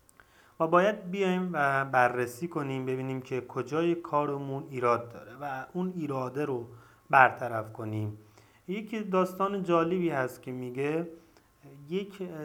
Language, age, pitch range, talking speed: Persian, 30-49, 130-165 Hz, 115 wpm